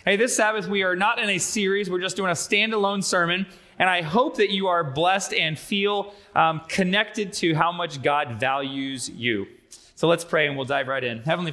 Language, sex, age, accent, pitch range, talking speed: English, male, 20-39, American, 145-205 Hz, 215 wpm